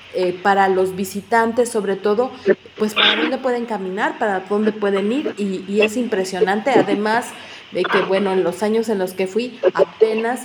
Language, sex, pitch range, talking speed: Spanish, female, 205-255 Hz, 180 wpm